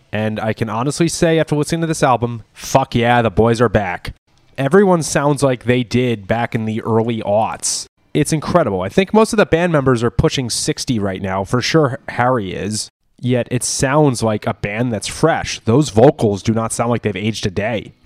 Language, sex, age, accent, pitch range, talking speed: English, male, 20-39, American, 110-145 Hz, 205 wpm